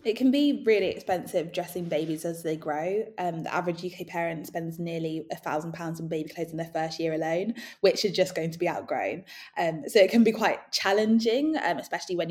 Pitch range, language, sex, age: 165-195 Hz, German, female, 20-39